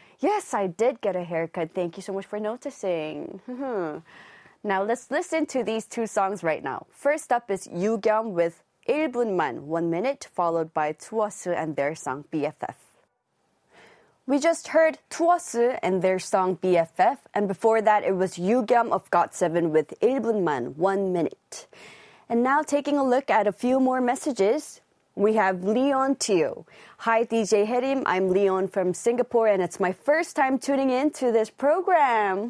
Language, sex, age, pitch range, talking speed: English, female, 20-39, 185-260 Hz, 160 wpm